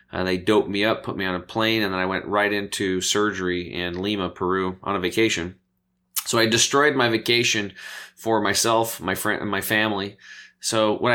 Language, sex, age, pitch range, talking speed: English, male, 20-39, 95-110 Hz, 200 wpm